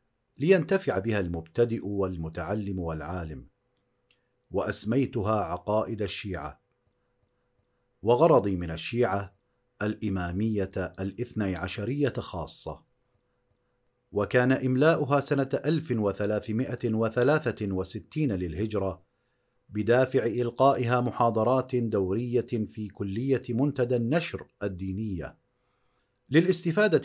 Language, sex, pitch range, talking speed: Arabic, male, 100-125 Hz, 65 wpm